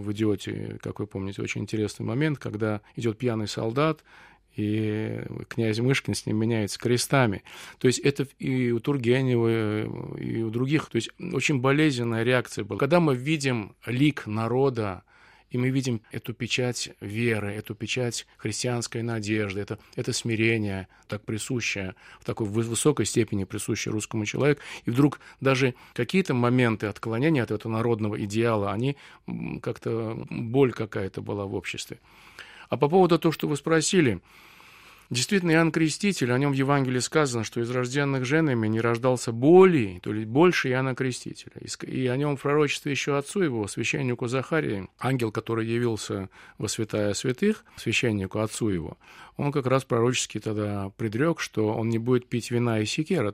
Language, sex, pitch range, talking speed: Russian, male, 110-135 Hz, 155 wpm